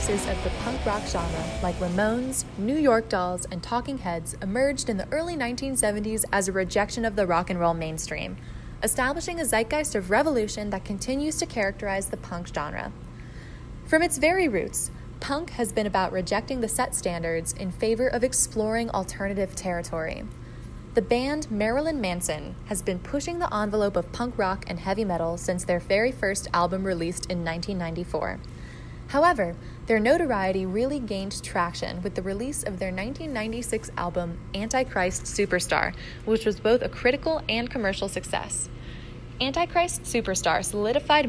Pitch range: 180-245 Hz